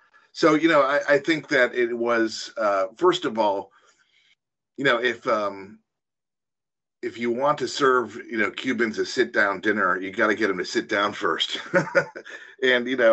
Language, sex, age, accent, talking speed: English, male, 40-59, American, 190 wpm